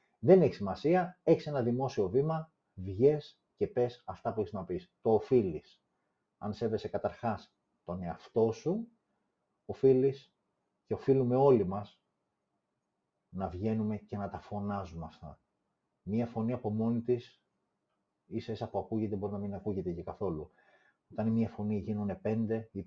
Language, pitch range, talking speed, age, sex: Greek, 100-145 Hz, 145 wpm, 30-49, male